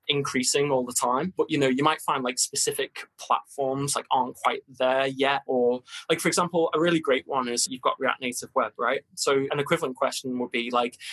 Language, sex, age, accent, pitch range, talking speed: English, male, 20-39, British, 120-140 Hz, 215 wpm